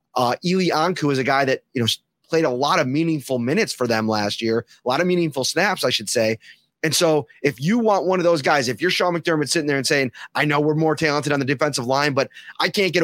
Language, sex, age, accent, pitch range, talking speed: English, male, 30-49, American, 130-165 Hz, 260 wpm